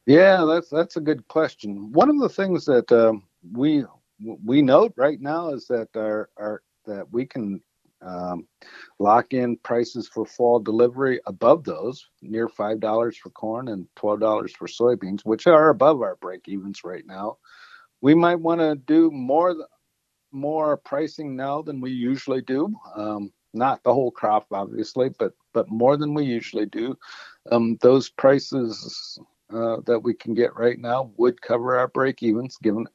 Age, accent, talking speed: 50-69, American, 170 wpm